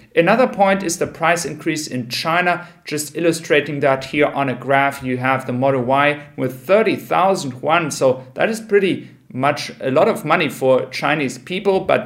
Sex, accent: male, German